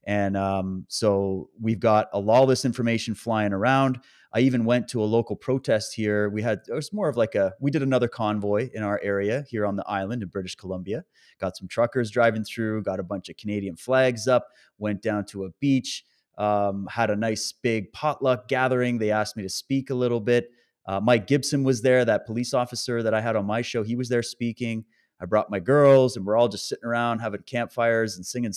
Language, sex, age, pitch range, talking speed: English, male, 30-49, 100-125 Hz, 220 wpm